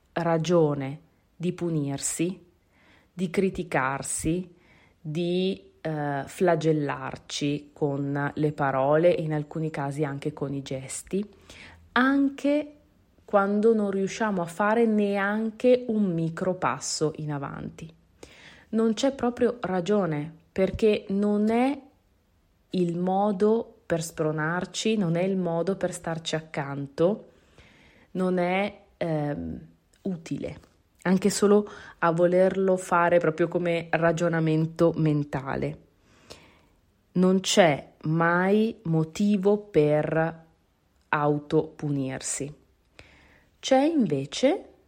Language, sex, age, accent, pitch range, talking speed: Italian, female, 30-49, native, 145-200 Hz, 95 wpm